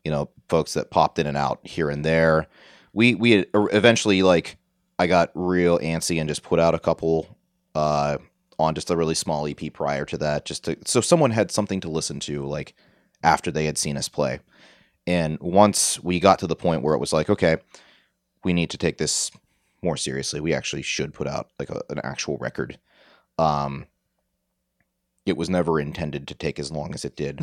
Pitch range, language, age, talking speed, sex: 75-95 Hz, English, 30-49, 200 wpm, male